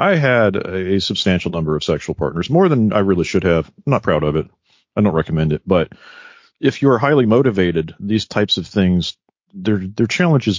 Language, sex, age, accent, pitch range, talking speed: English, male, 40-59, American, 90-120 Hz, 200 wpm